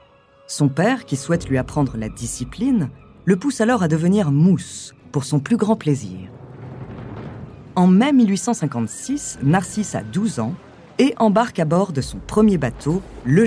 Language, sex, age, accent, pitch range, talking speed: French, female, 40-59, French, 135-220 Hz, 155 wpm